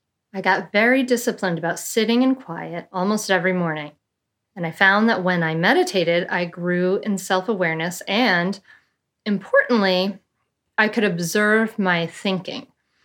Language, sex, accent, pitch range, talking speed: English, female, American, 175-215 Hz, 135 wpm